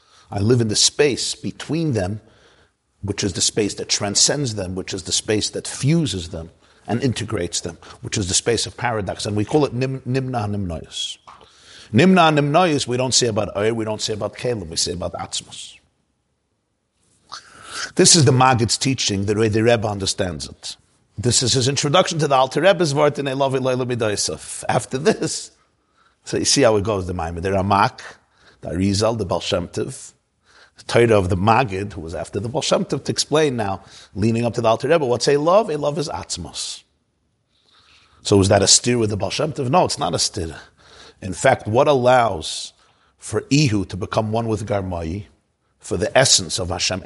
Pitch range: 100-130 Hz